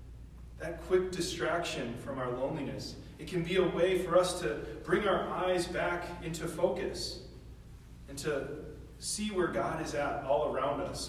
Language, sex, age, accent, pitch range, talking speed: English, male, 30-49, American, 120-170 Hz, 160 wpm